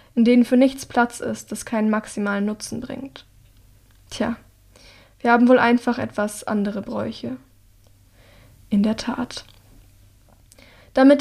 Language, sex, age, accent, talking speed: German, female, 10-29, German, 125 wpm